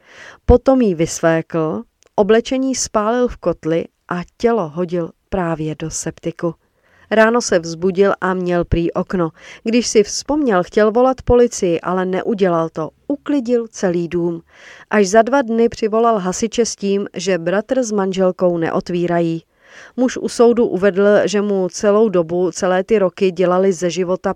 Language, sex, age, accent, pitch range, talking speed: Czech, female, 40-59, native, 180-230 Hz, 145 wpm